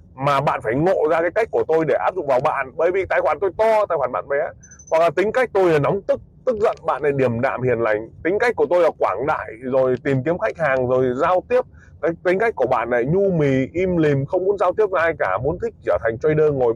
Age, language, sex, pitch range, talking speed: 20-39, Vietnamese, male, 125-195 Hz, 280 wpm